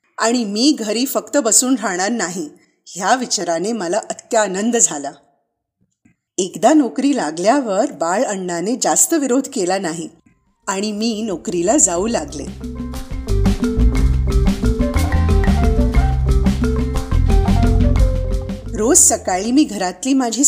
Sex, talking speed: female, 60 wpm